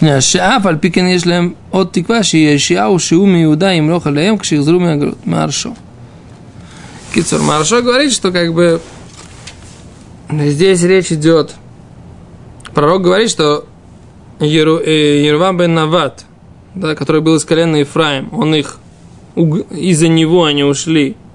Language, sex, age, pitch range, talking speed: Russian, male, 20-39, 150-195 Hz, 75 wpm